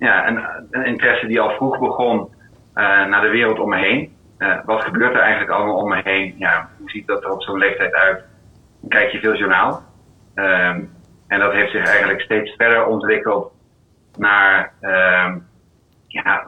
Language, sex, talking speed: Dutch, male, 180 wpm